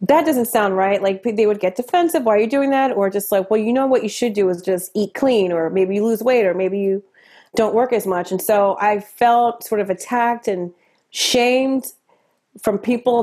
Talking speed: 230 wpm